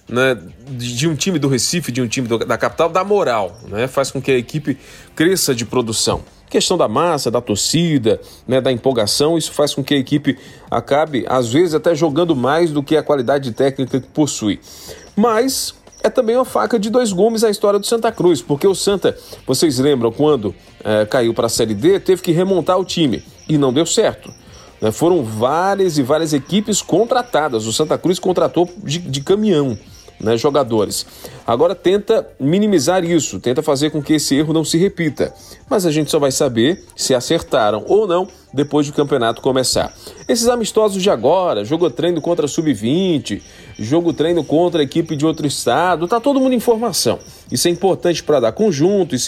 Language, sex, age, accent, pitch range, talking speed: Portuguese, male, 40-59, Brazilian, 130-185 Hz, 190 wpm